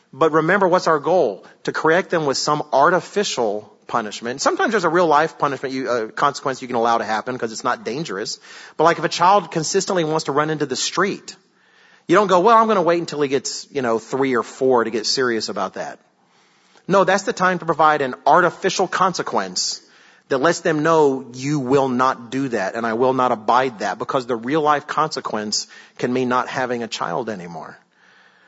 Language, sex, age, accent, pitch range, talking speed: English, male, 40-59, American, 125-165 Hz, 205 wpm